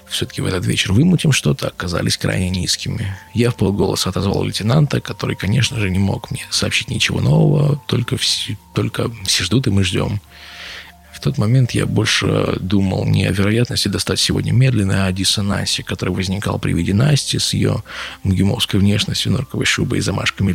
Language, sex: Russian, male